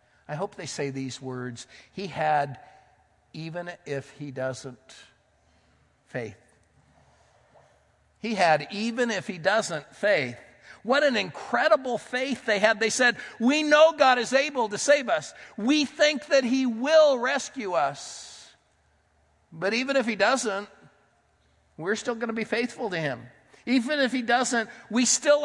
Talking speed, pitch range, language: 145 wpm, 145-235 Hz, English